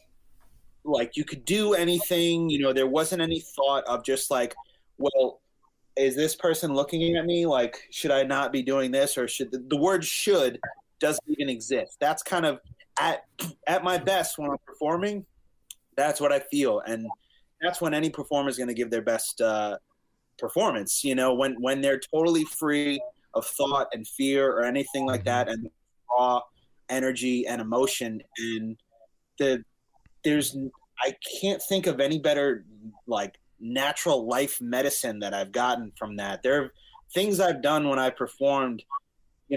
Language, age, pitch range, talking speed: English, 30-49, 125-160 Hz, 170 wpm